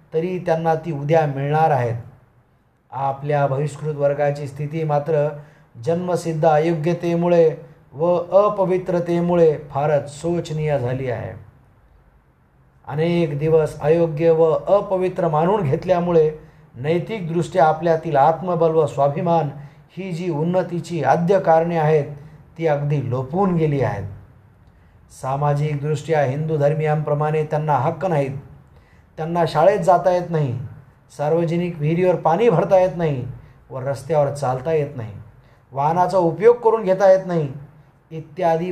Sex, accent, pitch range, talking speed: male, native, 140-165 Hz, 105 wpm